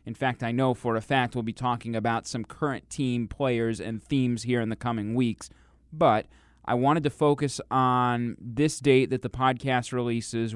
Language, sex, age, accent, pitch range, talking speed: English, male, 20-39, American, 110-140 Hz, 195 wpm